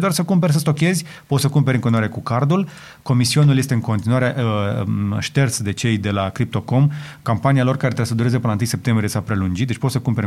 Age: 30-49